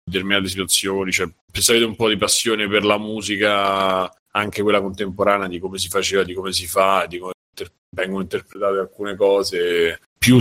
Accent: native